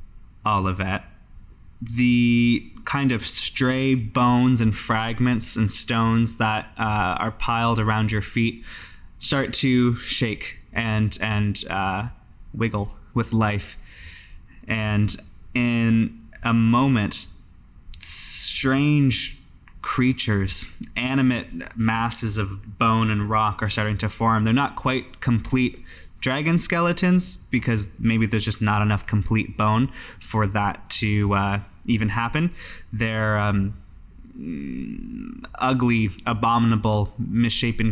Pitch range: 105-120 Hz